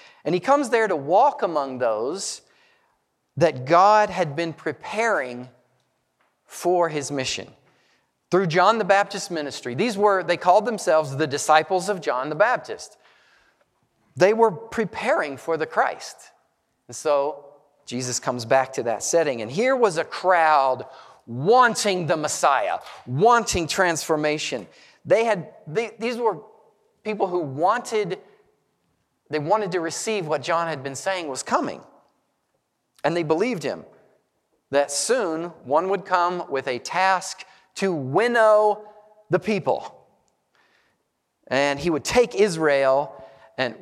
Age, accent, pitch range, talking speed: 40-59, American, 135-200 Hz, 135 wpm